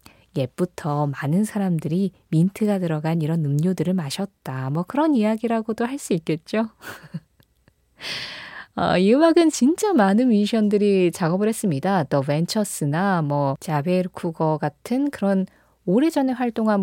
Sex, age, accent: female, 20-39, native